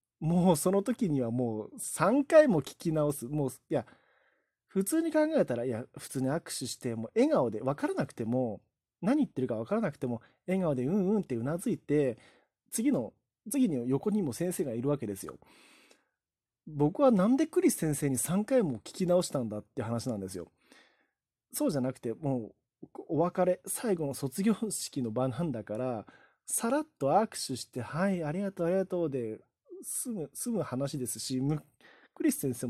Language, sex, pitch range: Japanese, male, 120-195 Hz